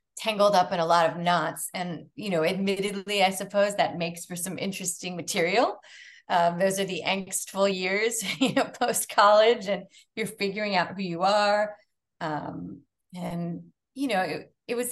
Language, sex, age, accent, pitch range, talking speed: English, female, 30-49, American, 170-220 Hz, 170 wpm